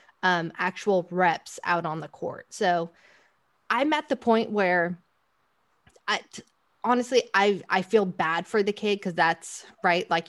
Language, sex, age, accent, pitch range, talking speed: English, female, 20-39, American, 175-200 Hz, 155 wpm